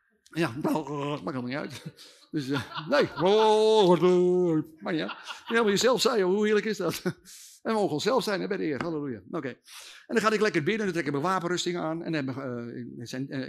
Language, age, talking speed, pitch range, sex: Dutch, 50-69, 220 wpm, 140-200 Hz, male